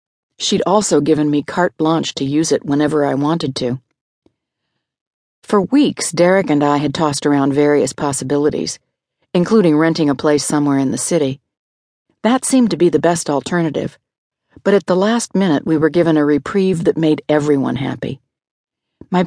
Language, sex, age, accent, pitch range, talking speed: English, female, 50-69, American, 145-175 Hz, 165 wpm